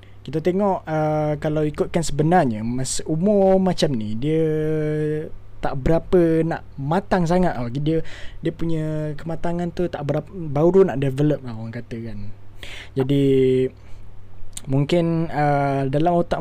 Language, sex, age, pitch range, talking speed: Malay, male, 20-39, 120-180 Hz, 130 wpm